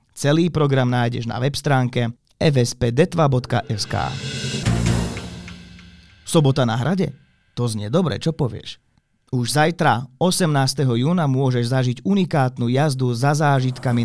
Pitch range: 120-150 Hz